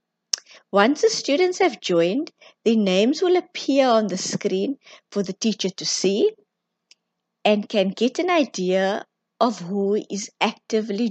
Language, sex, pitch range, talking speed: English, female, 195-255 Hz, 140 wpm